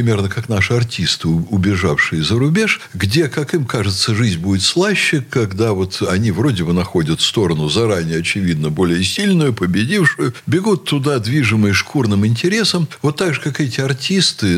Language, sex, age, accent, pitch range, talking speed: Russian, male, 60-79, native, 90-145 Hz, 150 wpm